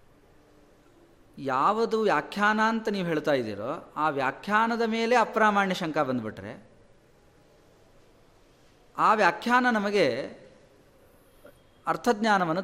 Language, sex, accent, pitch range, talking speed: Kannada, male, native, 135-225 Hz, 75 wpm